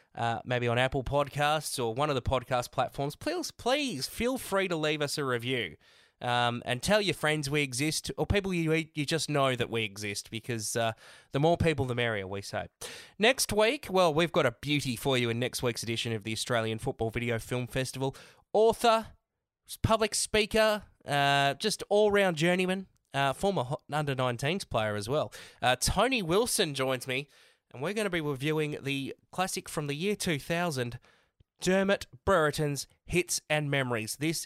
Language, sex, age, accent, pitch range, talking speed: English, male, 20-39, Australian, 115-160 Hz, 175 wpm